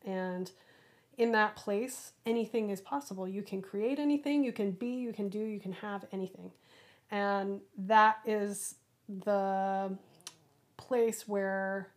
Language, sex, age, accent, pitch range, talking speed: English, female, 30-49, American, 190-215 Hz, 135 wpm